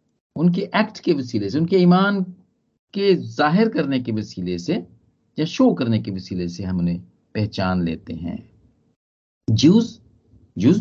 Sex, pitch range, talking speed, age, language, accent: male, 110-175 Hz, 145 wpm, 50-69, Hindi, native